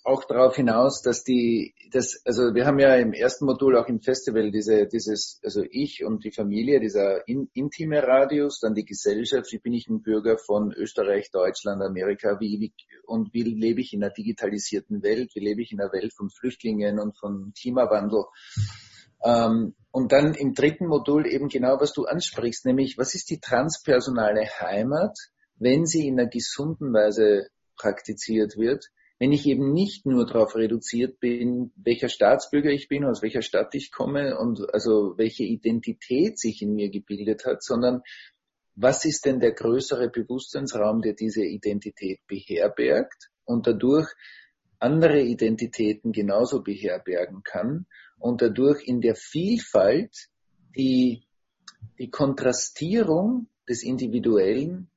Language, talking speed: English, 150 wpm